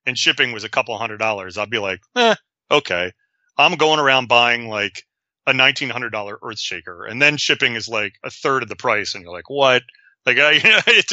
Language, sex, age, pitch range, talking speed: English, male, 30-49, 105-135 Hz, 210 wpm